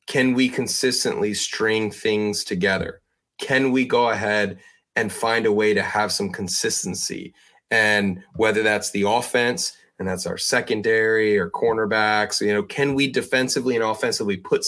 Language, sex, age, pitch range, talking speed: English, male, 30-49, 100-125 Hz, 150 wpm